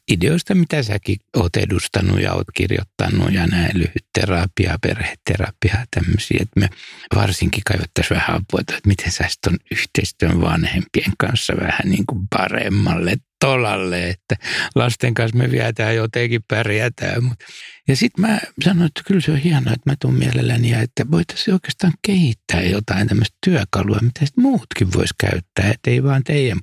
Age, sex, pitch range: 60-79, male, 100-135 Hz